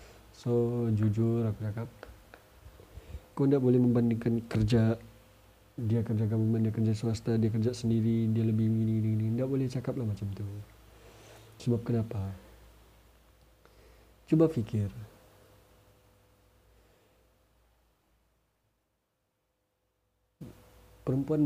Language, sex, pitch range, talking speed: Malay, male, 100-120 Hz, 90 wpm